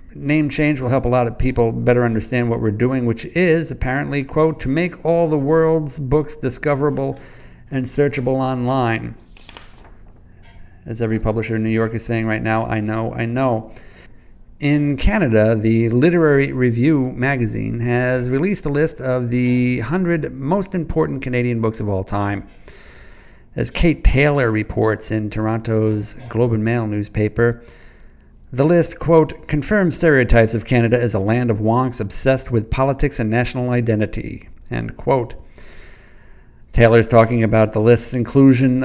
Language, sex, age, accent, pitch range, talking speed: English, male, 50-69, American, 110-135 Hz, 150 wpm